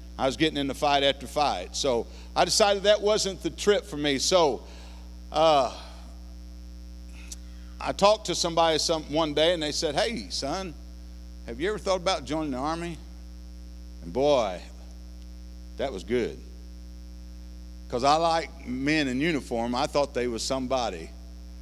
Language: English